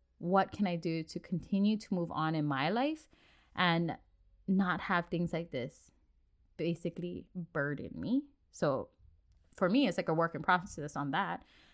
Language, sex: English, female